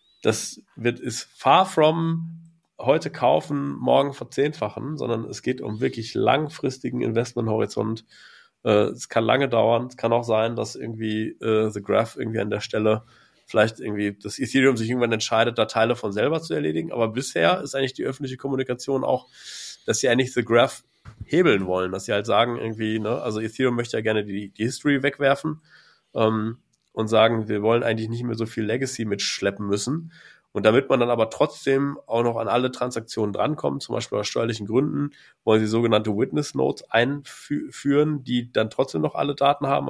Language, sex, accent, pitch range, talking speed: German, male, German, 110-135 Hz, 180 wpm